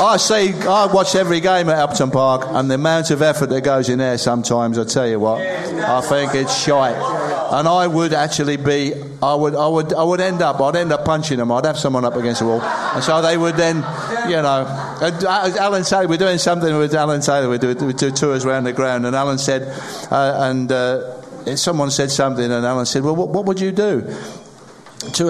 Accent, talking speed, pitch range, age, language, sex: British, 230 wpm, 130-180 Hz, 50-69, English, male